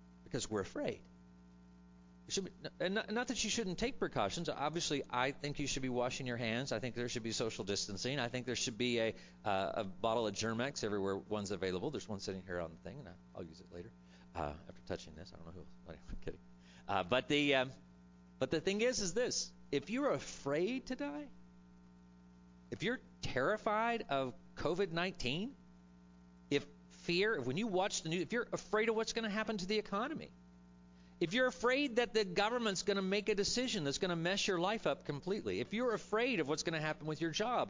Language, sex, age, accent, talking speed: English, male, 40-59, American, 215 wpm